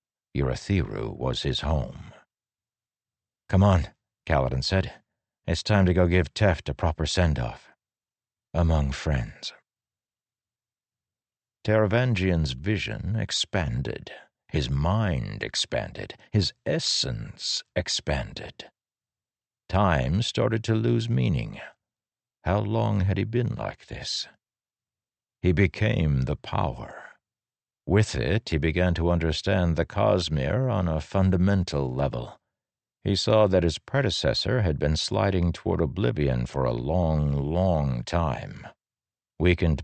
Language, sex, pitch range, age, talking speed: English, male, 75-105 Hz, 60-79, 110 wpm